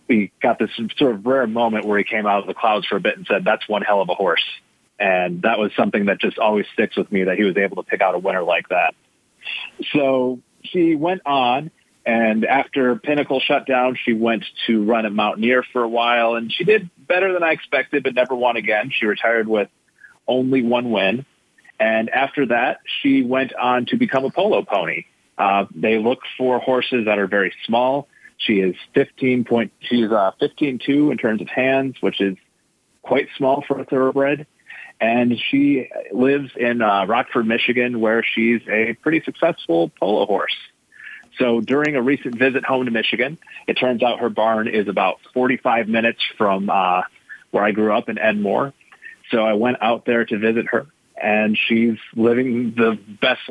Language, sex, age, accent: English, male, 30-49, American